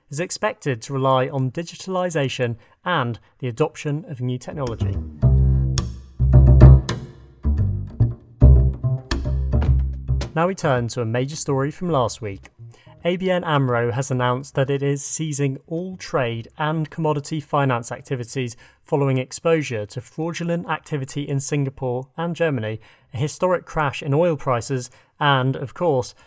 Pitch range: 120-155 Hz